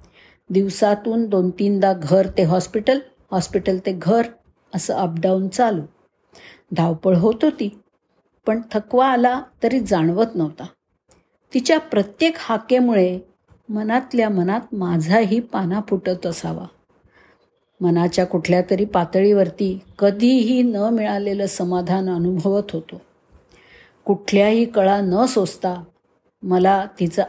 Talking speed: 105 wpm